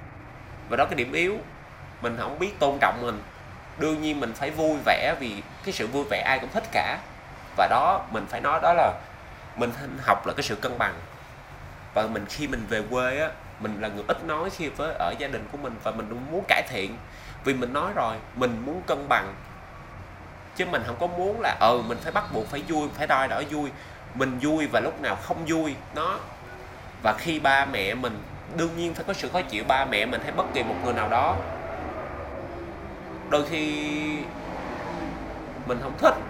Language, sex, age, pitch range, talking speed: Vietnamese, male, 20-39, 110-150 Hz, 205 wpm